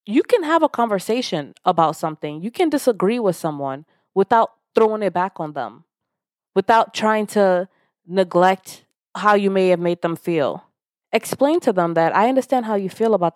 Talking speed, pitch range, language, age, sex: 175 wpm, 160-210 Hz, English, 20-39, female